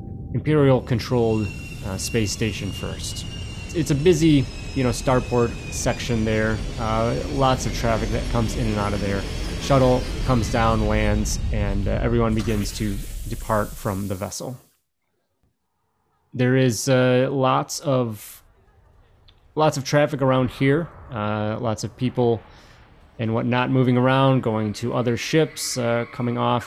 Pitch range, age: 105-125 Hz, 20-39